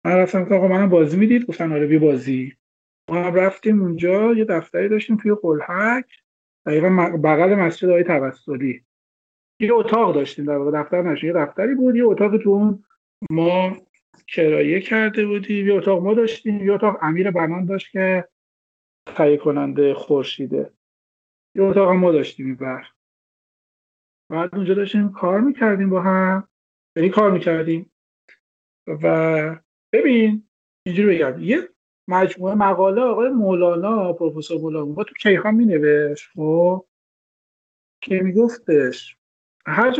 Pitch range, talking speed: 165-210 Hz, 135 wpm